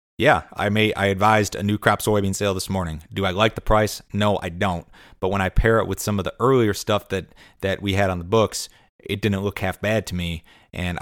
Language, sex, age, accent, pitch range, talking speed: English, male, 30-49, American, 90-105 Hz, 250 wpm